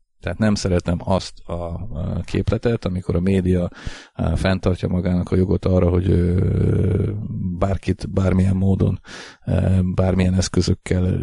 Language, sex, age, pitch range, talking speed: Hungarian, male, 40-59, 90-105 Hz, 105 wpm